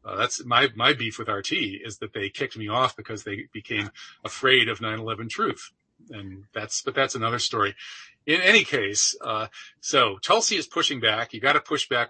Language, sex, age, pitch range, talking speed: English, male, 40-59, 105-125 Hz, 200 wpm